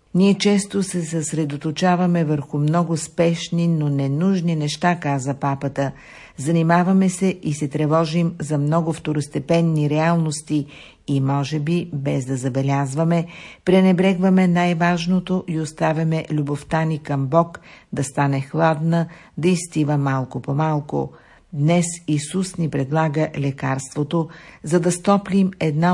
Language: Bulgarian